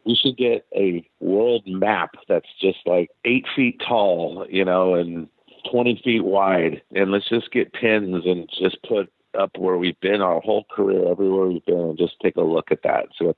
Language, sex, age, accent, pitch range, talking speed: English, male, 50-69, American, 85-95 Hz, 200 wpm